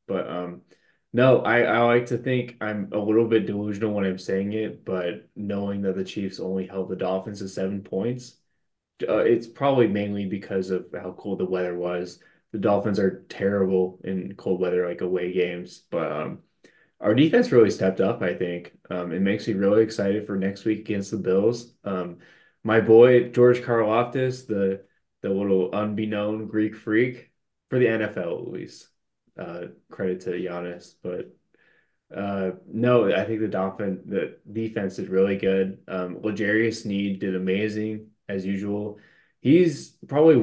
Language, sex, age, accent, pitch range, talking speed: English, male, 20-39, American, 95-115 Hz, 165 wpm